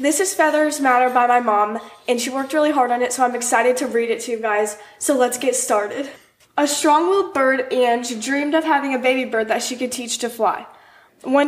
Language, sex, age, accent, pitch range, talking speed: English, female, 10-29, American, 230-275 Hz, 230 wpm